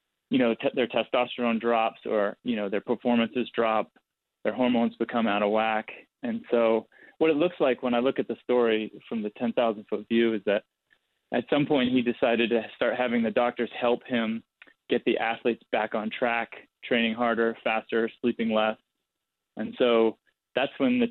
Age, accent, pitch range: 20-39, American, 110-130 Hz